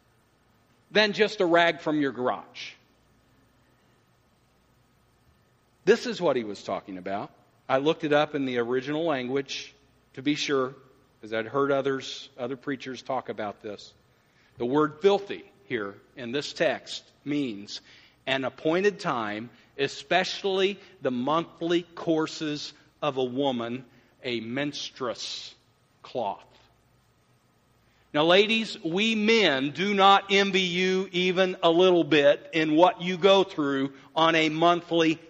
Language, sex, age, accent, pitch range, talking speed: English, male, 50-69, American, 145-200 Hz, 125 wpm